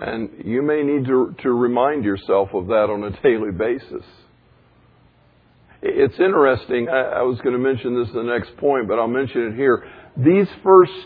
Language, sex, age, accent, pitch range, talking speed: English, male, 50-69, American, 115-150 Hz, 185 wpm